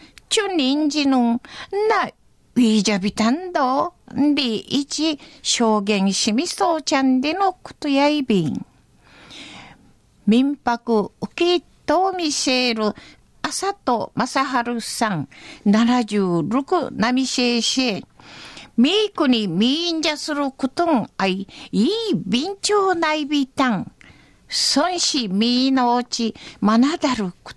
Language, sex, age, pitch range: Japanese, female, 50-69, 225-300 Hz